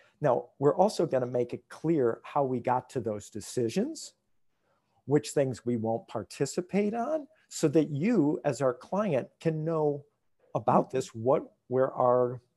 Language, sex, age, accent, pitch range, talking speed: English, male, 50-69, American, 125-165 Hz, 155 wpm